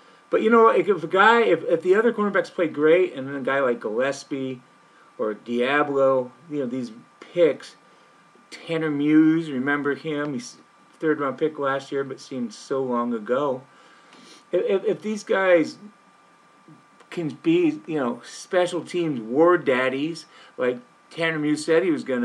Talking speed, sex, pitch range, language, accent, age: 160 wpm, male, 145-210 Hz, English, American, 40-59